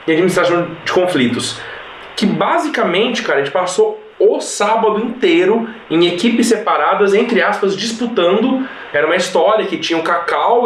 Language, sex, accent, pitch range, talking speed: Portuguese, male, Brazilian, 190-250 Hz, 145 wpm